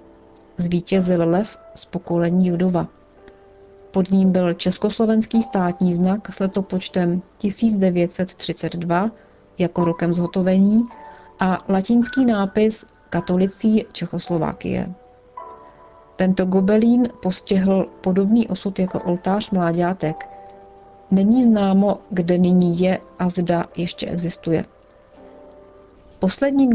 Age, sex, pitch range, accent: 40-59, female, 180-220 Hz, native